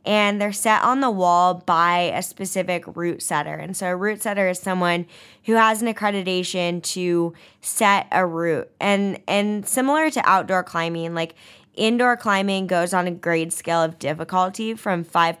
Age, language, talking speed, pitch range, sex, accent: 10-29, English, 170 wpm, 165-195 Hz, female, American